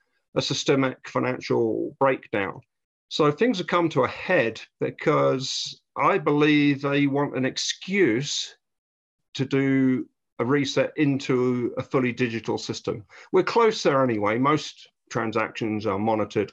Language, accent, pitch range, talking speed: English, British, 120-150 Hz, 125 wpm